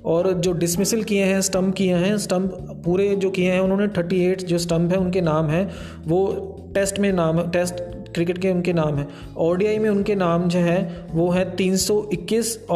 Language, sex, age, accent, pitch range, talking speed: Hindi, male, 20-39, native, 170-190 Hz, 195 wpm